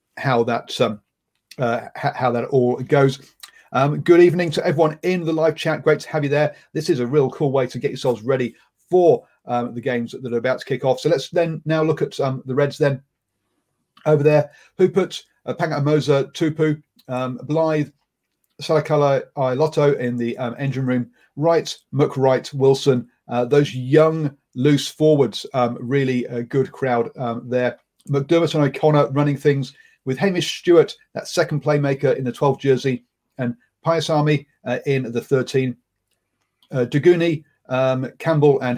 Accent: British